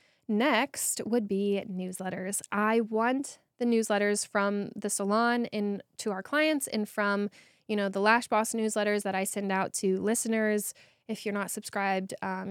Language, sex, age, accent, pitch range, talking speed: English, female, 10-29, American, 200-235 Hz, 165 wpm